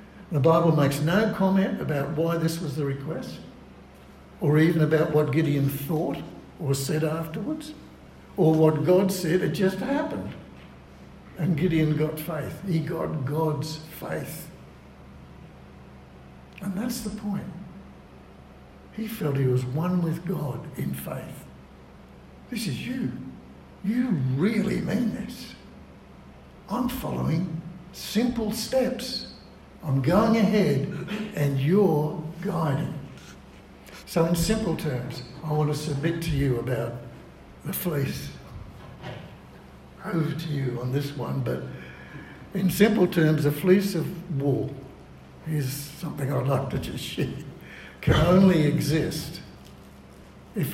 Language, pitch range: English, 125-175 Hz